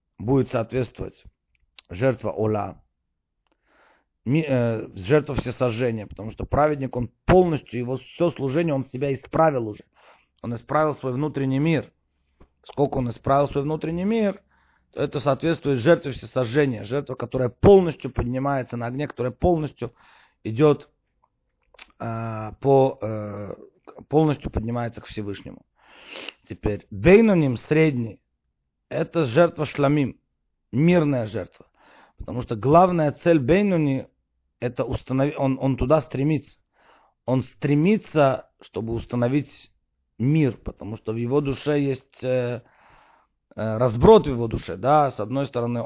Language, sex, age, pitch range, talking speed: Russian, male, 40-59, 115-150 Hz, 120 wpm